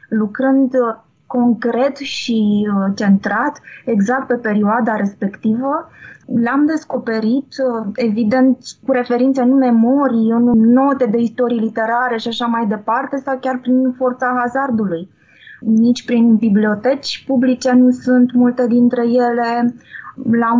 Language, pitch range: Romanian, 225-270 Hz